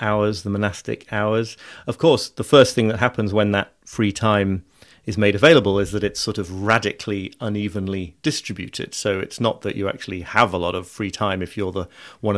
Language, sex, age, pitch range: English, male, 30-49, 95-110 Hz